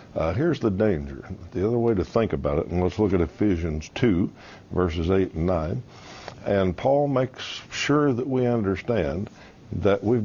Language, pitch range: English, 80-105 Hz